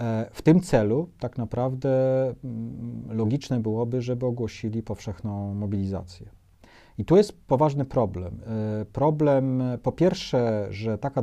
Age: 40-59